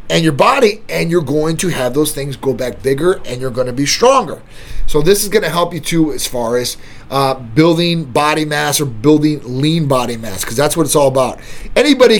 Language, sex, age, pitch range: English, male, 30-49, 140-190 Hz